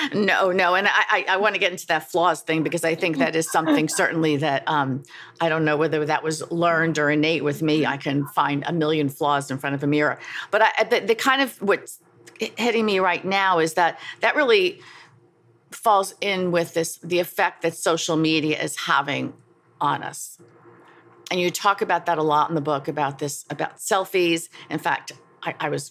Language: English